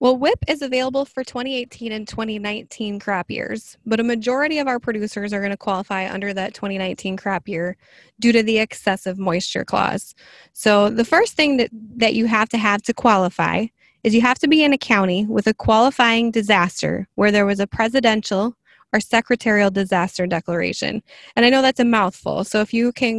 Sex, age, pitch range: female, 20-39, 195-240 Hz